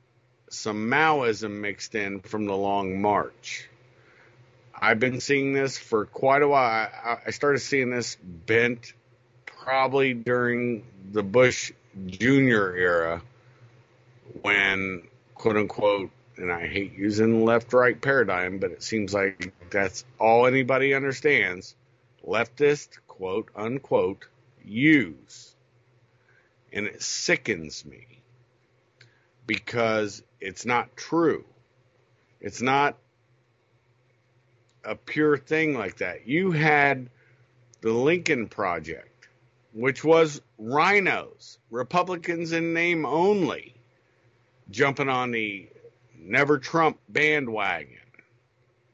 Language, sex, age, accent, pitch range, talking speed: English, male, 50-69, American, 115-135 Hz, 100 wpm